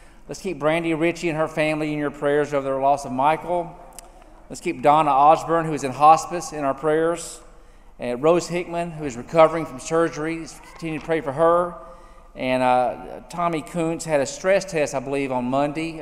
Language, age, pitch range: English, 40-59, 150-185 Hz